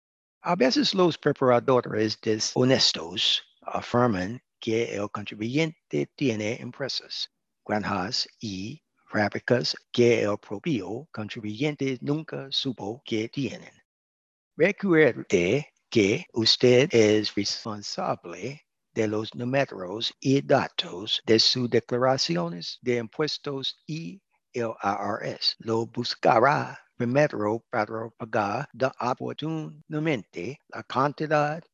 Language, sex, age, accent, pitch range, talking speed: English, male, 60-79, American, 110-140 Hz, 95 wpm